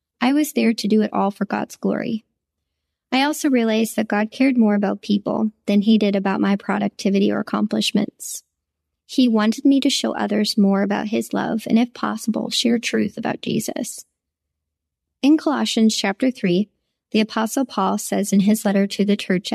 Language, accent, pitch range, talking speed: English, American, 185-225 Hz, 180 wpm